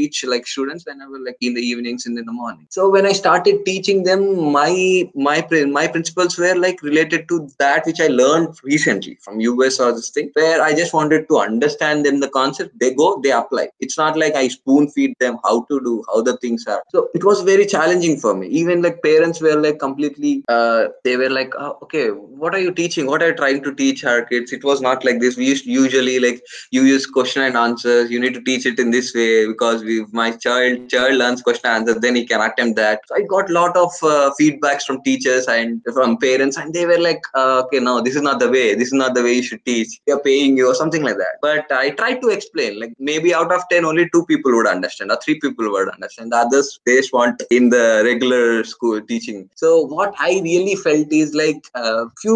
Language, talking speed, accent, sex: English, 240 wpm, Indian, male